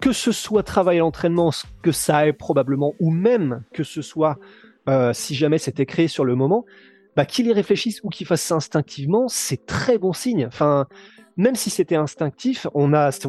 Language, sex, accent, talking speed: French, male, French, 200 wpm